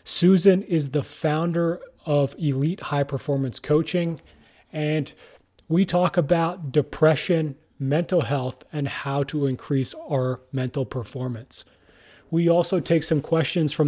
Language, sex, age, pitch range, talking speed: English, male, 30-49, 135-155 Hz, 125 wpm